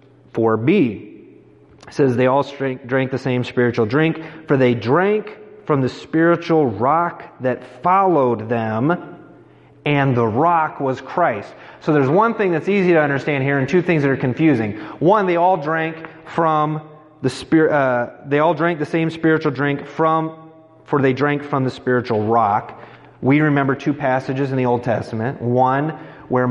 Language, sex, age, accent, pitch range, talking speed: English, male, 30-49, American, 125-160 Hz, 165 wpm